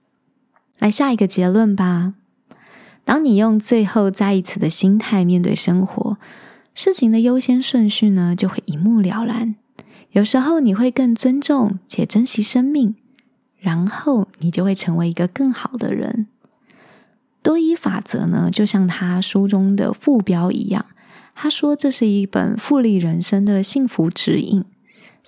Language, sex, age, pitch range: Chinese, female, 20-39, 195-250 Hz